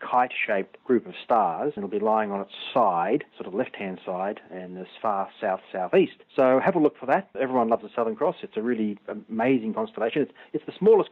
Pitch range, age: 110-140 Hz, 40-59